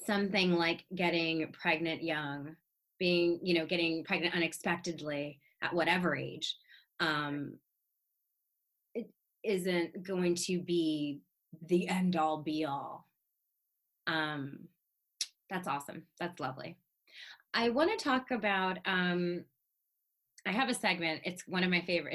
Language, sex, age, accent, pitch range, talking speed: English, female, 20-39, American, 155-190 Hz, 120 wpm